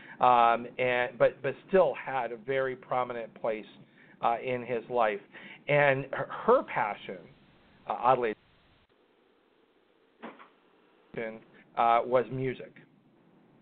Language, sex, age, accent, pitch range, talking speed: English, male, 50-69, American, 115-145 Hz, 100 wpm